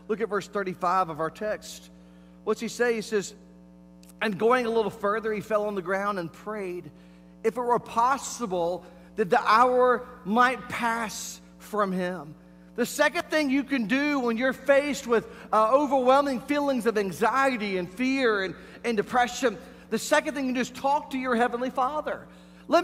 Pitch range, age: 190-265 Hz, 40-59